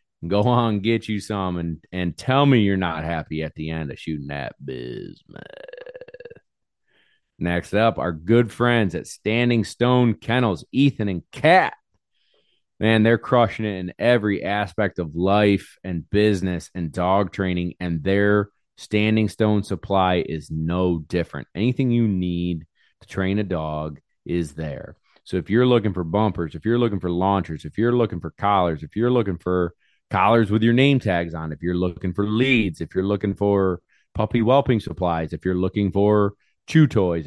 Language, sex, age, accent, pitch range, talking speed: English, male, 30-49, American, 85-110 Hz, 170 wpm